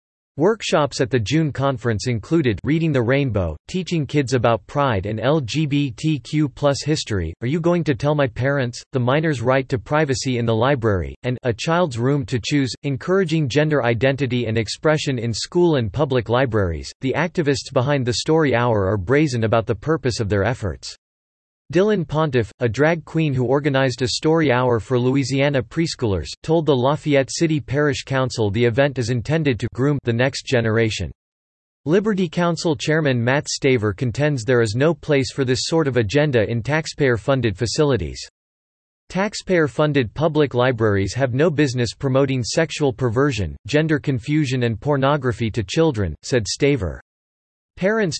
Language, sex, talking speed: English, male, 155 wpm